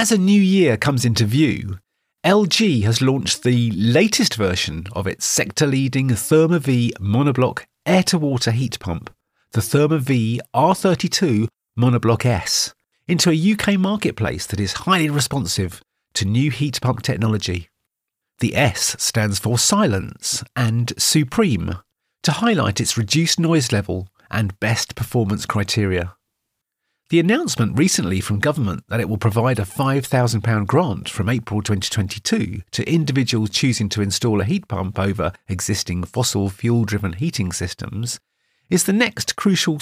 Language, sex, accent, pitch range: English, male, British, 105-145 Hz